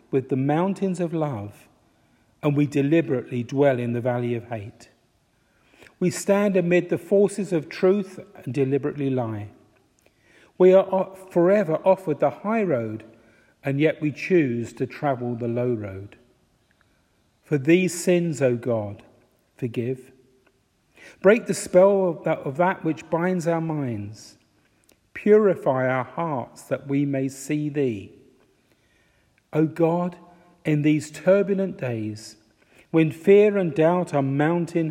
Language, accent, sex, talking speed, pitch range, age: English, British, male, 130 wpm, 120-175 Hz, 50-69